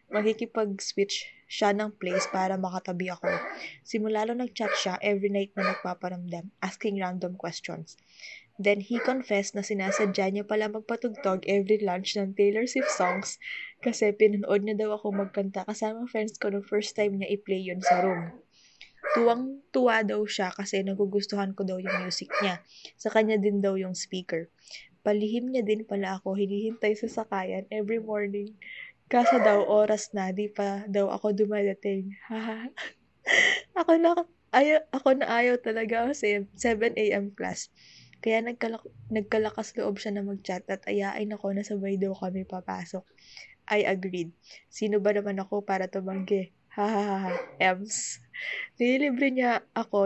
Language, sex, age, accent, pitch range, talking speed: Filipino, female, 20-39, native, 195-220 Hz, 145 wpm